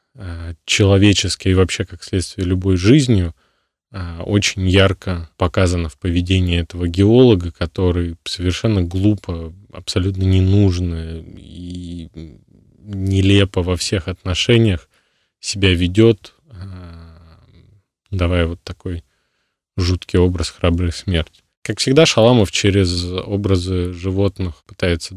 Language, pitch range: Russian, 85-100 Hz